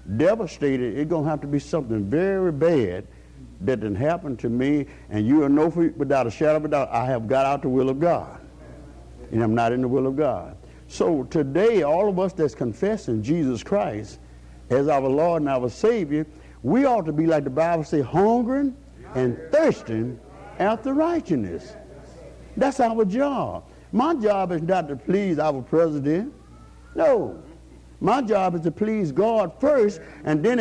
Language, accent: English, American